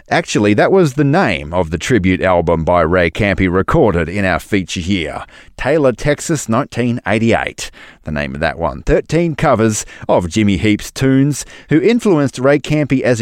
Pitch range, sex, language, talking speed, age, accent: 95-135 Hz, male, English, 165 wpm, 30-49, Australian